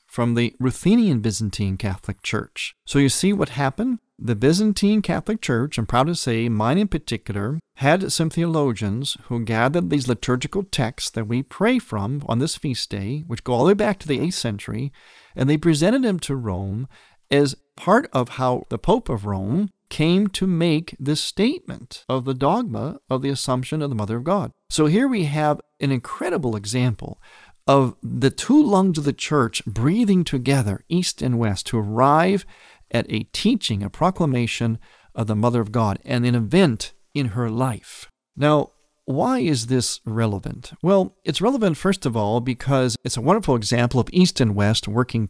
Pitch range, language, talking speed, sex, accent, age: 115-165 Hz, English, 180 wpm, male, American, 40-59